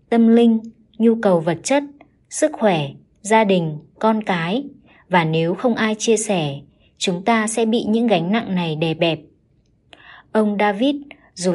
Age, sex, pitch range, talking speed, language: 20-39, male, 180-230 Hz, 160 wpm, Vietnamese